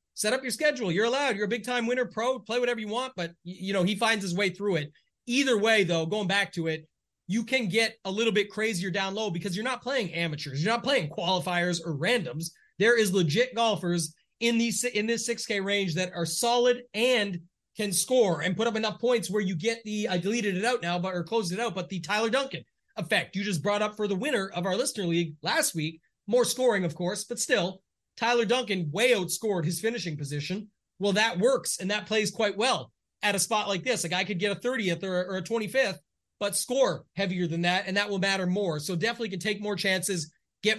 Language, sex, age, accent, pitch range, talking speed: English, male, 30-49, American, 180-230 Hz, 230 wpm